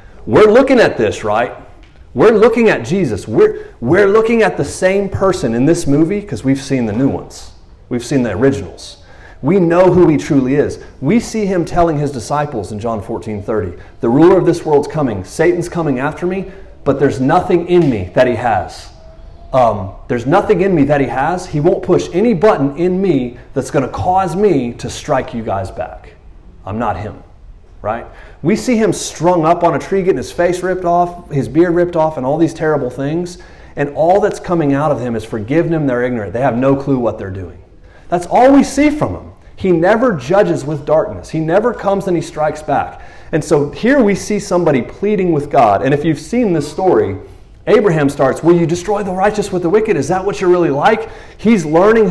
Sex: male